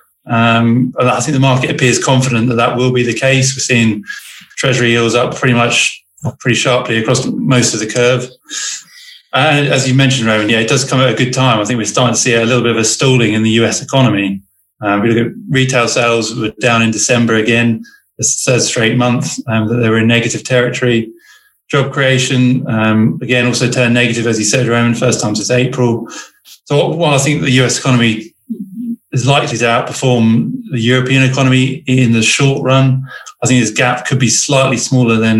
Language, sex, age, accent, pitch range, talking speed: English, male, 20-39, British, 115-130 Hz, 205 wpm